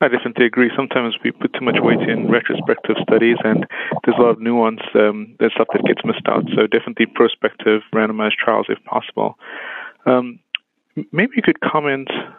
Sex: male